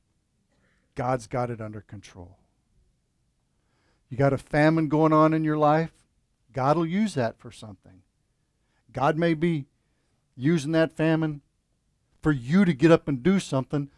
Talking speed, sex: 145 wpm, male